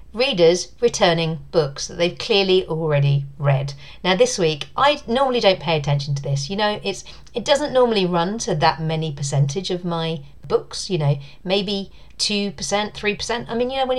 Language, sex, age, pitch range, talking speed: English, female, 40-59, 155-200 Hz, 180 wpm